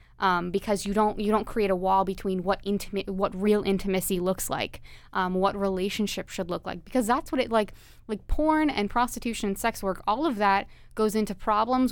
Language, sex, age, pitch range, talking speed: English, female, 20-39, 185-215 Hz, 205 wpm